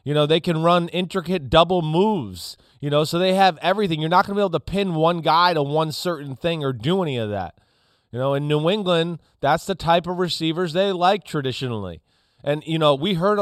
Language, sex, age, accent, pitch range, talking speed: English, male, 30-49, American, 135-170 Hz, 230 wpm